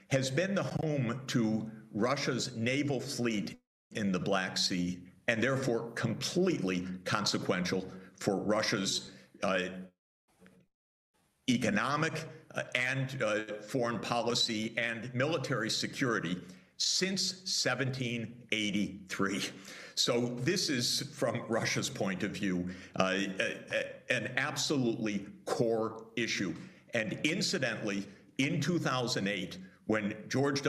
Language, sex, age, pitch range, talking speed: English, male, 60-79, 105-145 Hz, 95 wpm